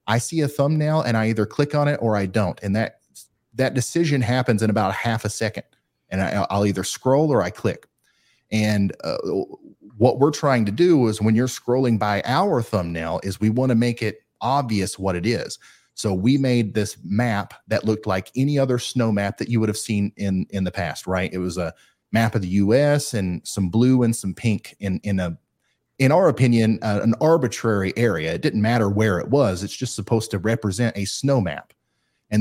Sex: male